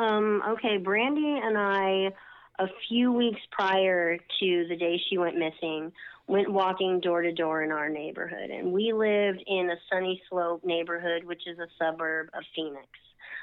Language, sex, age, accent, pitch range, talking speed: English, female, 30-49, American, 170-200 Hz, 155 wpm